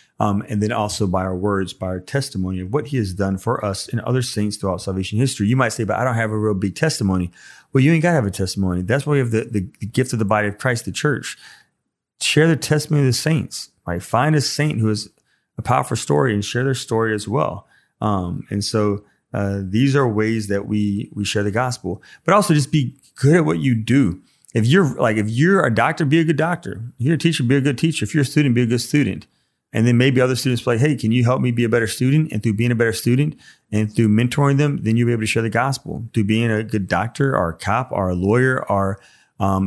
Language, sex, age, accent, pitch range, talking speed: English, male, 30-49, American, 105-135 Hz, 265 wpm